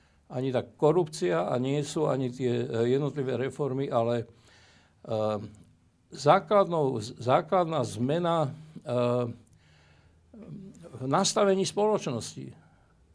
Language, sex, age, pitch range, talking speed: Slovak, male, 60-79, 115-155 Hz, 80 wpm